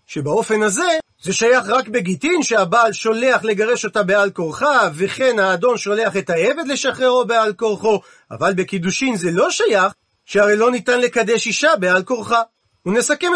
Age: 40-59